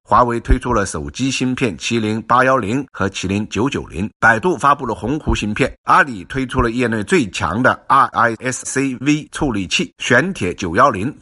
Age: 50-69